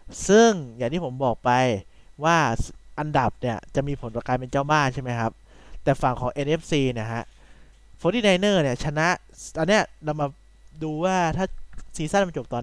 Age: 20-39